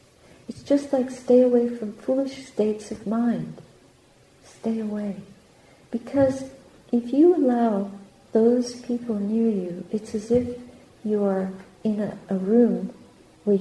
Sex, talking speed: female, 130 wpm